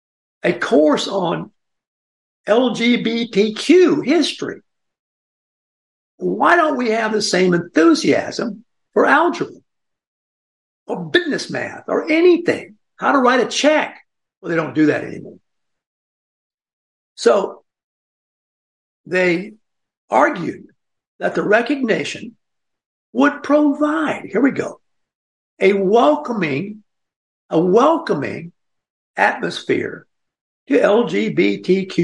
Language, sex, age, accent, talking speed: English, male, 60-79, American, 90 wpm